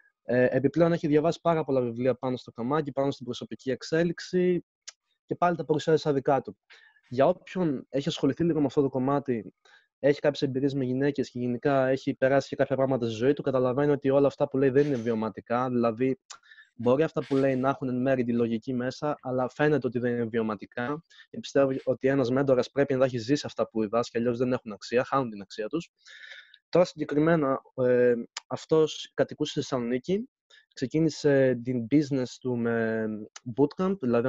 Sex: male